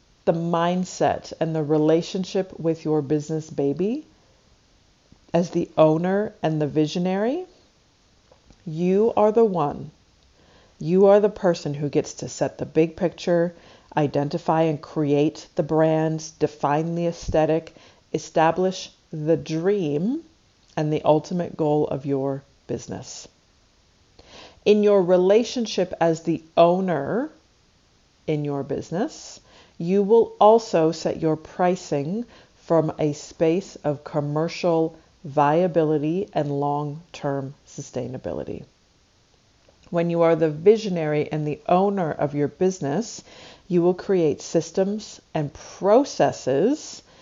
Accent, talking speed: American, 115 wpm